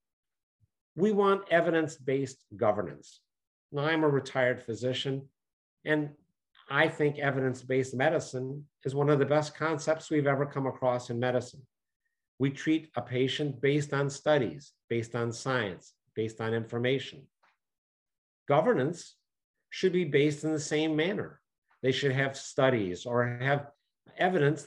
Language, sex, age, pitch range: English, male, 50-69, 125-150 Hz